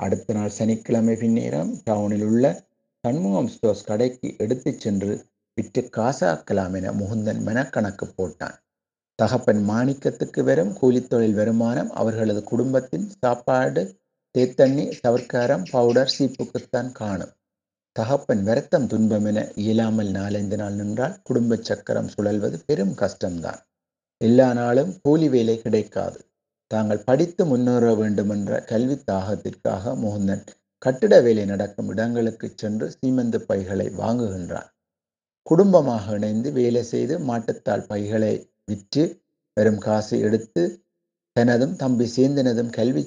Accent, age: native, 60-79